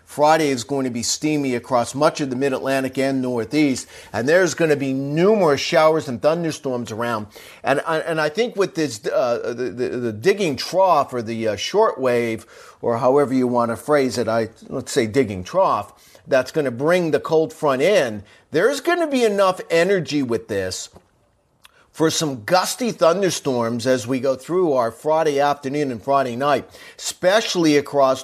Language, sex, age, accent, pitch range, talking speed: English, male, 40-59, American, 125-155 Hz, 175 wpm